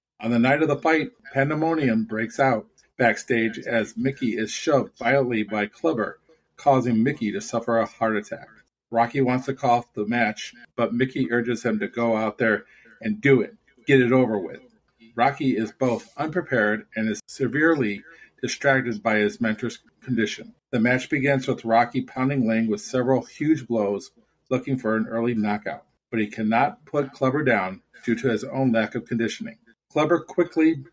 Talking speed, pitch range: 175 wpm, 110-135 Hz